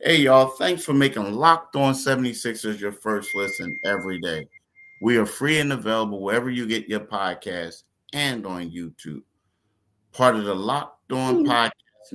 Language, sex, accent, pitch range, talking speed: English, male, American, 100-120 Hz, 165 wpm